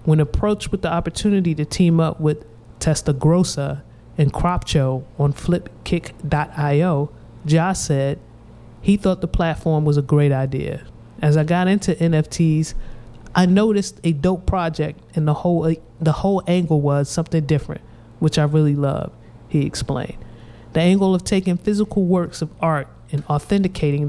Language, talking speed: English, 145 wpm